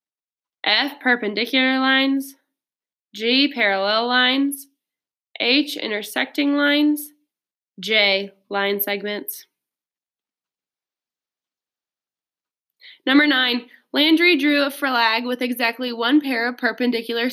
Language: English